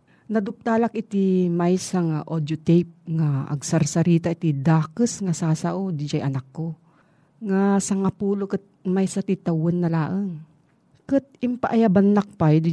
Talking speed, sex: 140 wpm, female